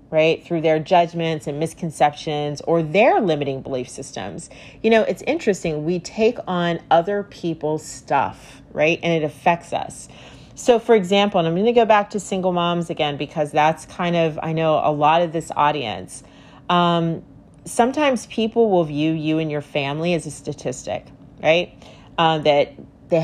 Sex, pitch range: female, 155-200 Hz